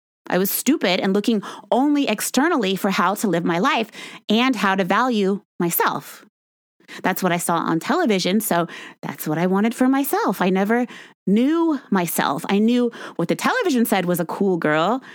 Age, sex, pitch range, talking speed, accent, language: 30-49, female, 190-260 Hz, 180 wpm, American, English